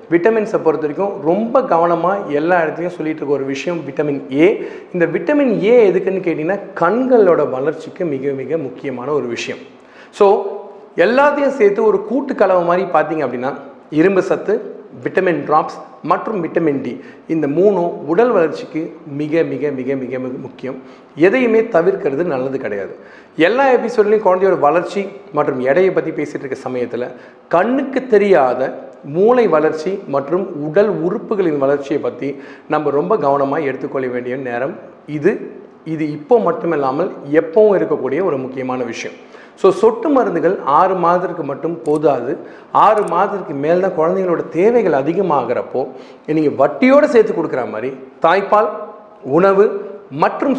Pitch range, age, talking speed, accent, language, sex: 150-215 Hz, 40-59, 130 wpm, native, Tamil, male